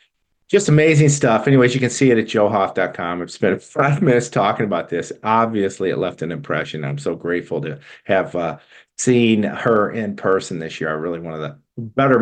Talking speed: 195 wpm